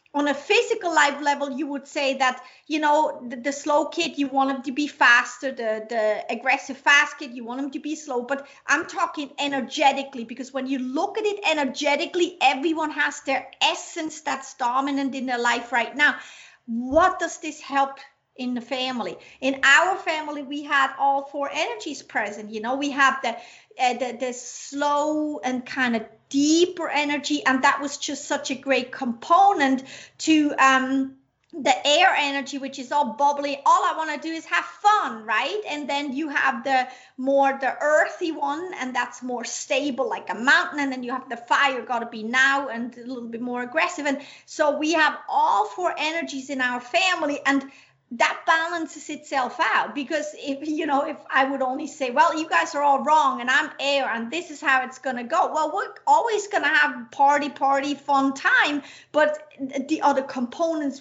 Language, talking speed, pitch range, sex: English, 190 wpm, 260-305 Hz, female